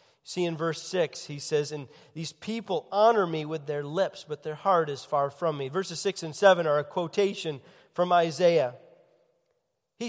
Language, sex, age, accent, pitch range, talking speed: English, male, 40-59, American, 160-220 Hz, 185 wpm